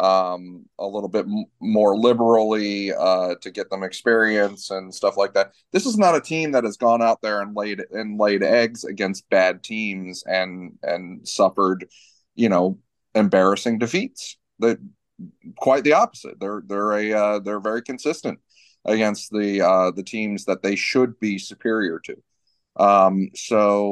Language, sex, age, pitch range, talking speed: English, male, 30-49, 100-125 Hz, 165 wpm